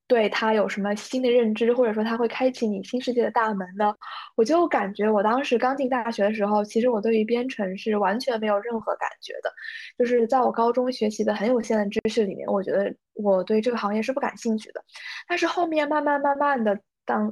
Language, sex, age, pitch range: Chinese, female, 10-29, 215-265 Hz